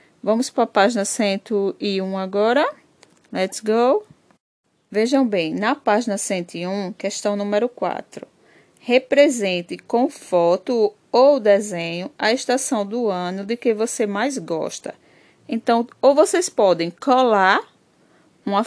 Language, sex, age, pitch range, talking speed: Portuguese, female, 20-39, 195-240 Hz, 115 wpm